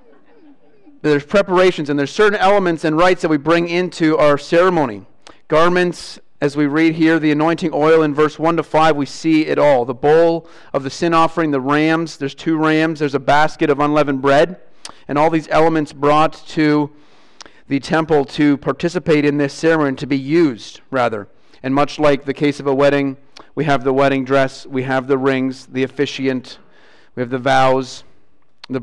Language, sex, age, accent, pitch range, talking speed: English, male, 40-59, American, 140-165 Hz, 185 wpm